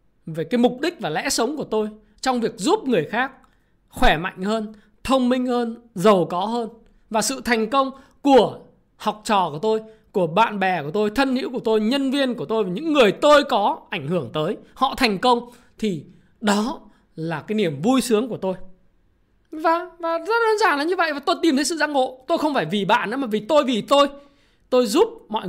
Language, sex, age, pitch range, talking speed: Vietnamese, male, 20-39, 175-255 Hz, 220 wpm